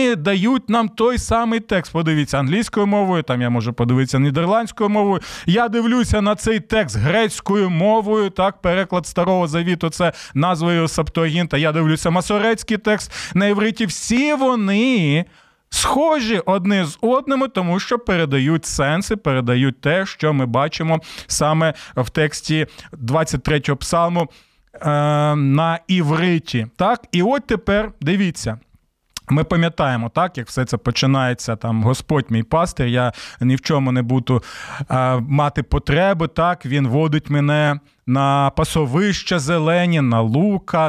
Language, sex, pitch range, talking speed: Ukrainian, male, 140-190 Hz, 135 wpm